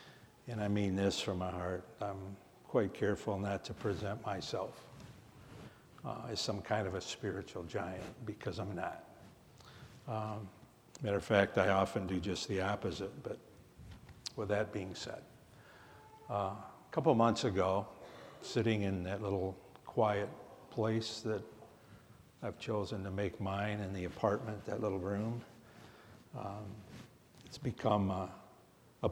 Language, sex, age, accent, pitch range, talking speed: English, male, 60-79, American, 95-115 Hz, 140 wpm